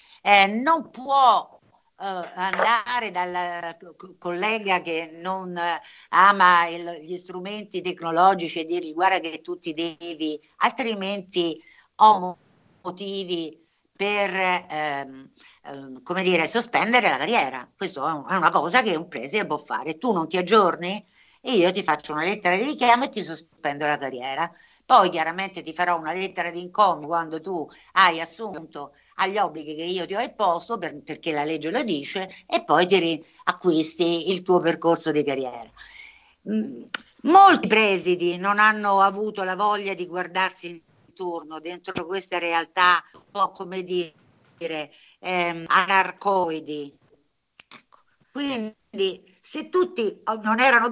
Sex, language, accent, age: female, Italian, native, 60-79